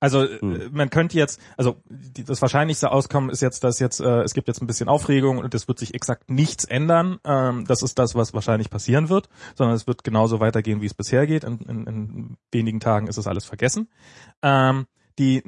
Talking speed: 210 wpm